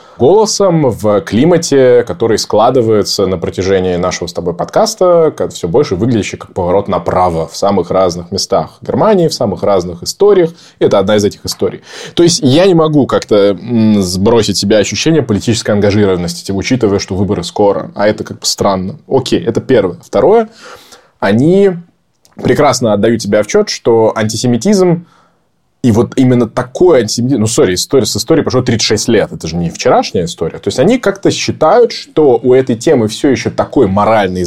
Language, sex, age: Russian, male, 20-39